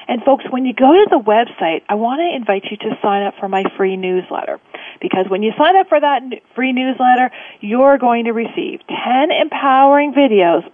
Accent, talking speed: American, 200 wpm